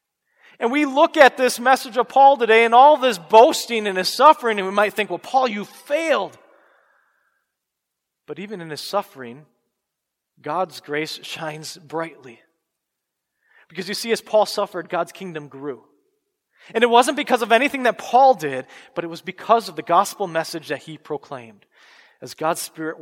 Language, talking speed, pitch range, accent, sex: English, 170 wpm, 165-250 Hz, American, male